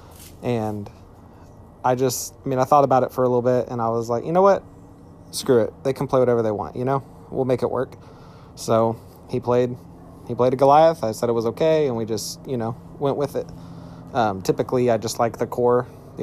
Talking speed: 225 wpm